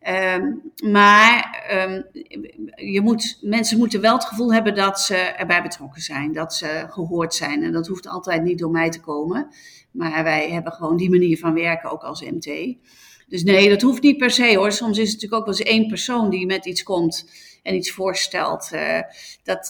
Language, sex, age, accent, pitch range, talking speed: Dutch, female, 40-59, Dutch, 175-220 Hz, 190 wpm